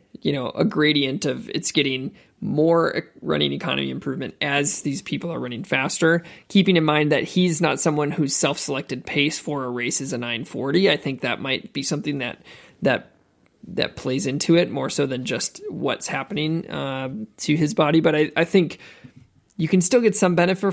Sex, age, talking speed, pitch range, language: male, 20-39, 190 wpm, 140-170 Hz, English